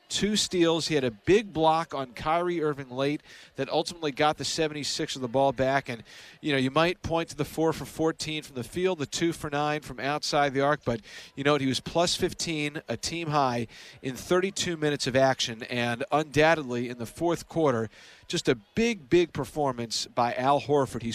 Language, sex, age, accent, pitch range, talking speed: English, male, 40-59, American, 130-170 Hz, 205 wpm